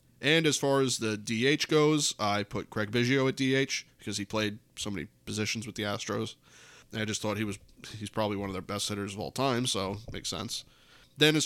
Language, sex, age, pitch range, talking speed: English, male, 20-39, 105-135 Hz, 225 wpm